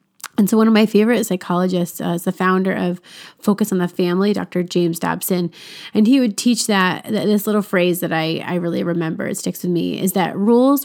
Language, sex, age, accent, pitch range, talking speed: English, female, 30-49, American, 175-205 Hz, 220 wpm